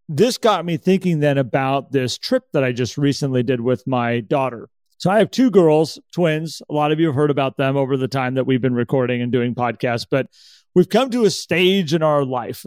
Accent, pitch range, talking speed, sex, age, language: American, 130-165 Hz, 230 wpm, male, 40-59, English